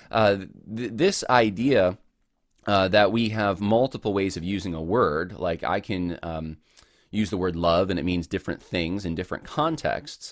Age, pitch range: 20-39, 85-105 Hz